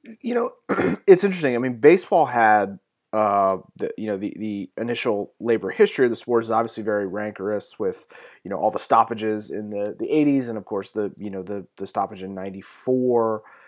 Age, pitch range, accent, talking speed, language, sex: 30-49, 110-140 Hz, American, 195 wpm, English, male